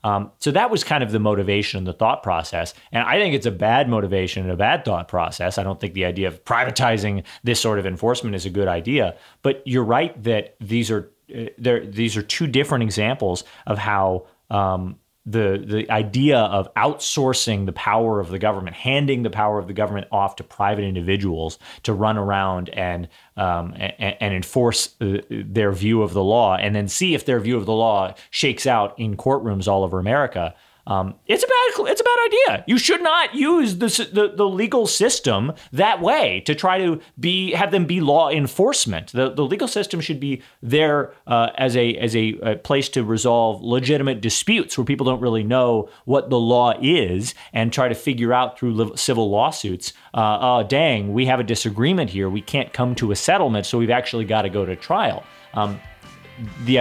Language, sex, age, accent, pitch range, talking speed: English, male, 30-49, American, 100-130 Hz, 200 wpm